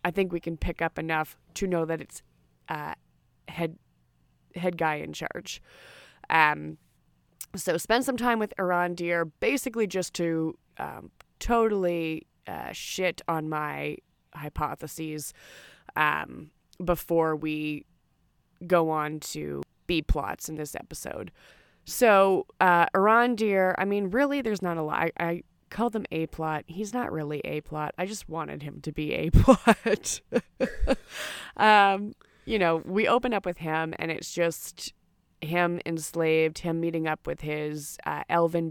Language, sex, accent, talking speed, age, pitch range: English, female, American, 145 wpm, 20-39, 155-180 Hz